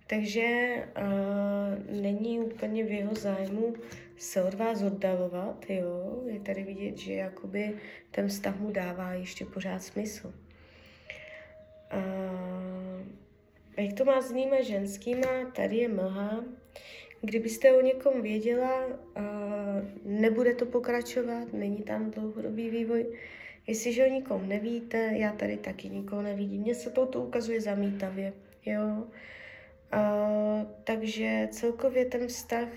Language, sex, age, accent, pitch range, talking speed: Czech, female, 20-39, native, 195-230 Hz, 120 wpm